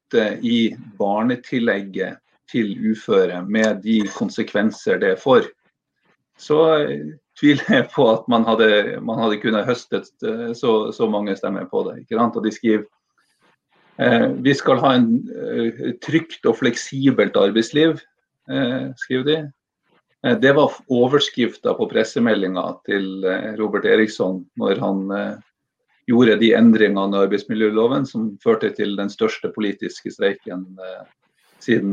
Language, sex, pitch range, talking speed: English, male, 105-160 Hz, 130 wpm